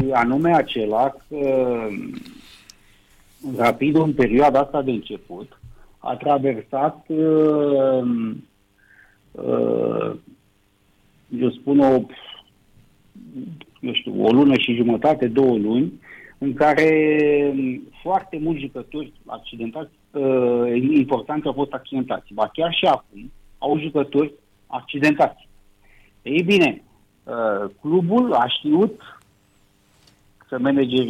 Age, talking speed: 50-69, 90 wpm